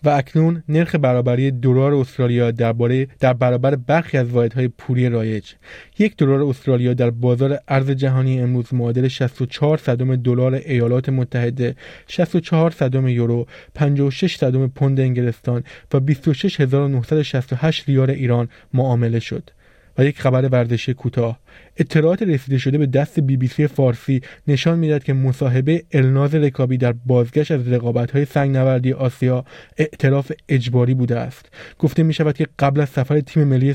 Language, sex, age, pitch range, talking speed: Persian, male, 20-39, 125-150 Hz, 145 wpm